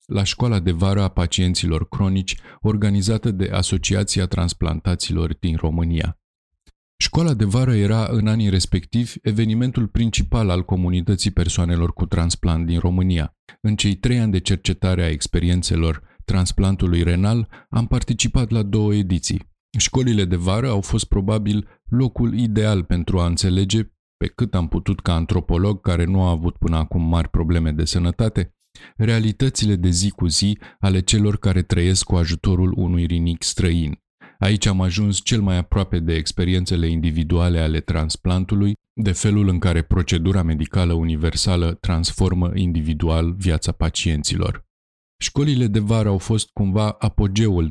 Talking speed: 145 wpm